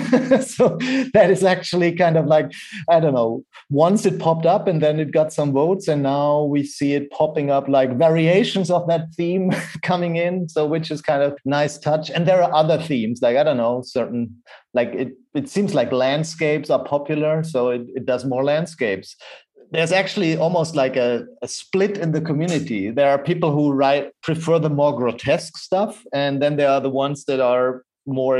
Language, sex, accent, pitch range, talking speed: English, male, German, 135-165 Hz, 200 wpm